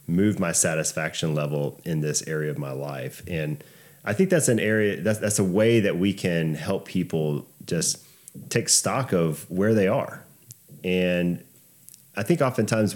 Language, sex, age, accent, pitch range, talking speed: English, male, 30-49, American, 80-110 Hz, 165 wpm